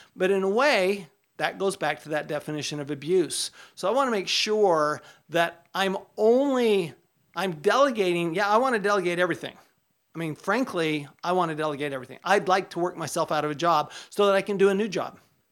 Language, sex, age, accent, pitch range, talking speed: English, male, 50-69, American, 160-195 Hz, 195 wpm